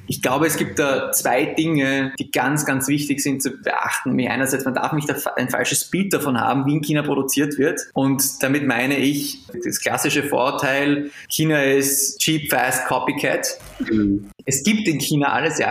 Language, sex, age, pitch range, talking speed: German, male, 20-39, 135-155 Hz, 185 wpm